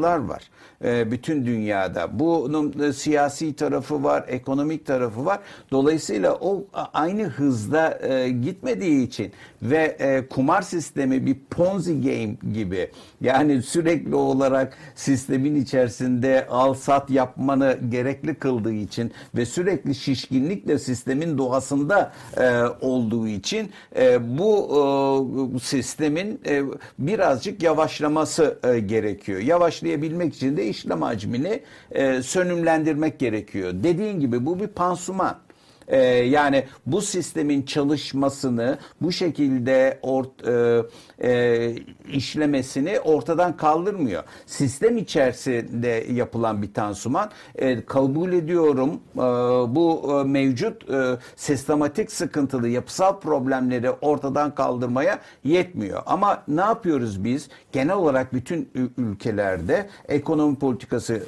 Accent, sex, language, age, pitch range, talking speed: native, male, Turkish, 60-79, 125-160 Hz, 105 wpm